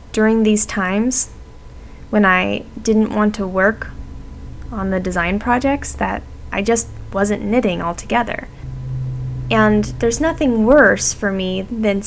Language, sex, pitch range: English, female, 175-230 Hz